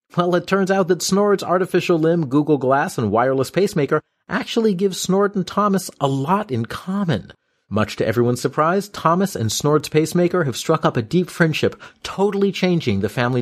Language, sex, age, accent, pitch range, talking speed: English, male, 40-59, American, 115-165 Hz, 180 wpm